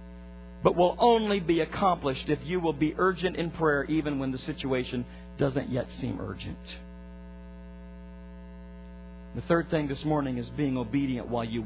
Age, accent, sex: 50-69, American, male